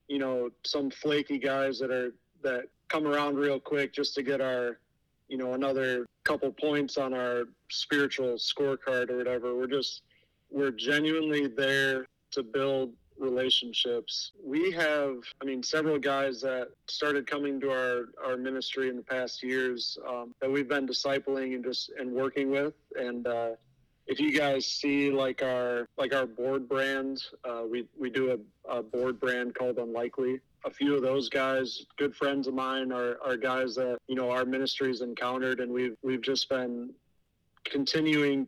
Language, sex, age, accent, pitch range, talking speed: English, male, 30-49, American, 125-140 Hz, 170 wpm